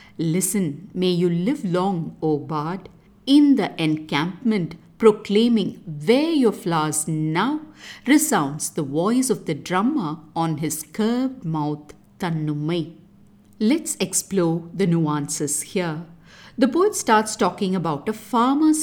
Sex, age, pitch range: female, 50-69, 160-230 Hz